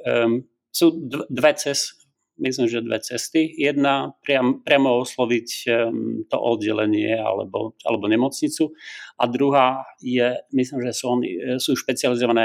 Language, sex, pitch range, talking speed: Slovak, male, 120-150 Hz, 130 wpm